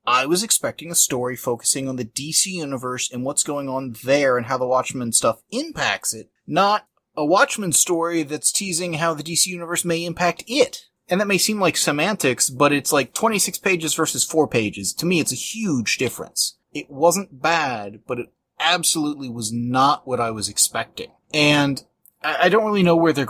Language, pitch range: English, 125-165 Hz